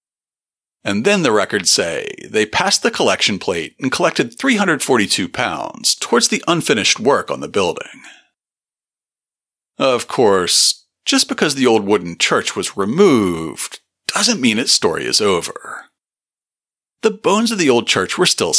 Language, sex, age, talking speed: English, male, 40-59, 145 wpm